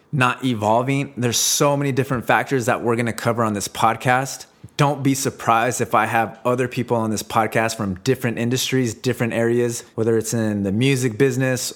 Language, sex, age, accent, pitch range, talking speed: English, male, 20-39, American, 110-125 Hz, 190 wpm